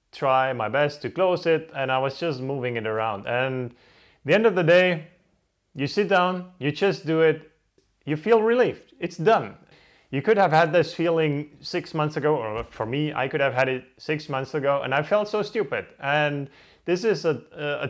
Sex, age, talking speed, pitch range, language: male, 20-39, 210 wpm, 135-170 Hz, English